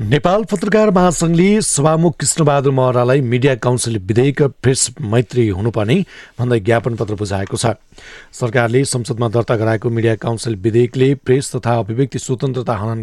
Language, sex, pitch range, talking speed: English, male, 110-130 Hz, 140 wpm